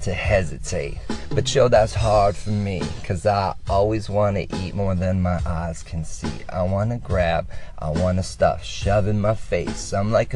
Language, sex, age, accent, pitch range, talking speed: English, male, 30-49, American, 90-110 Hz, 175 wpm